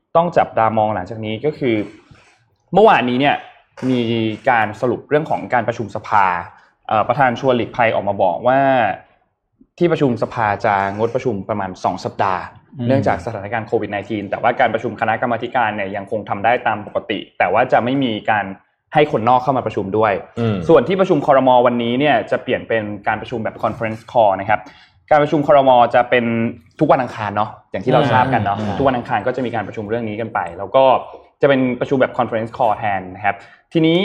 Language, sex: Thai, male